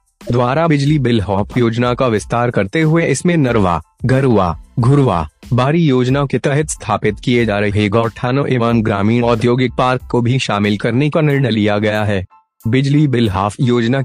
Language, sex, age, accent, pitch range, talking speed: Hindi, male, 30-49, native, 110-135 Hz, 165 wpm